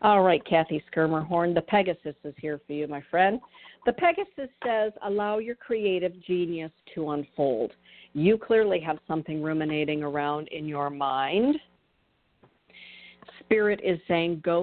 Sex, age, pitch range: female, 50-69, 155-185 Hz